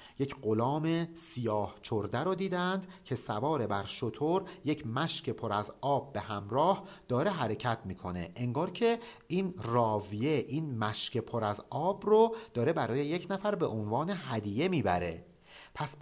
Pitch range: 115-180 Hz